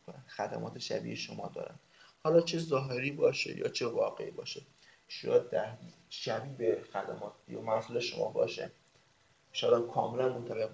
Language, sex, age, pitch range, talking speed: Persian, male, 30-49, 120-155 Hz, 130 wpm